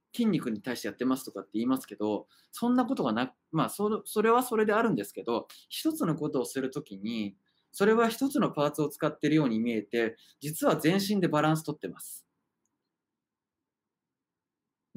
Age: 20-39